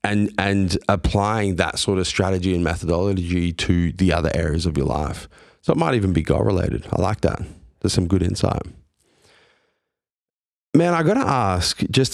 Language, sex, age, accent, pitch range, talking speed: English, male, 30-49, Australian, 85-105 Hz, 175 wpm